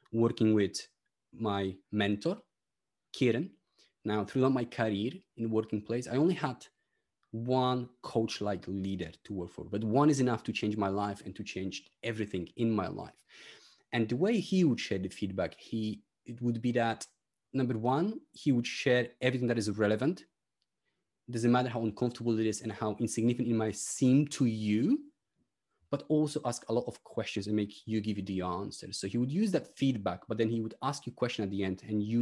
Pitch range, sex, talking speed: 105-125 Hz, male, 200 wpm